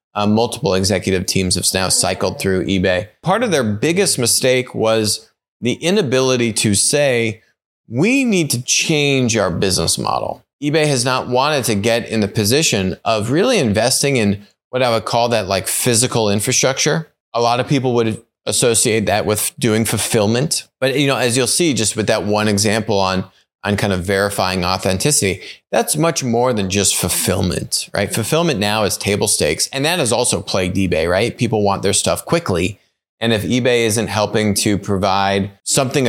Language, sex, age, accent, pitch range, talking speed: English, male, 30-49, American, 100-130 Hz, 175 wpm